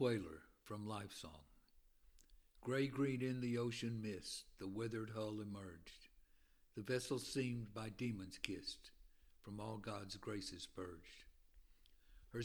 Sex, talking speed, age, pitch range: male, 125 wpm, 60-79, 95-120 Hz